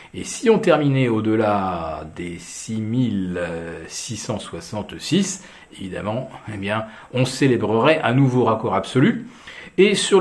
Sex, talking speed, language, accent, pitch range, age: male, 105 wpm, French, French, 100-140 Hz, 40-59